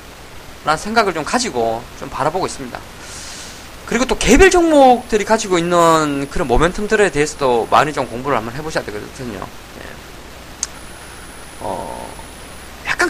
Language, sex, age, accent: Korean, male, 20-39, native